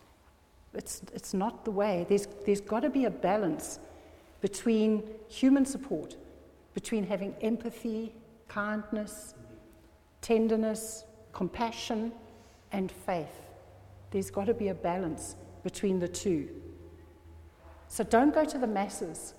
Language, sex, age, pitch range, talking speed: English, female, 60-79, 175-225 Hz, 120 wpm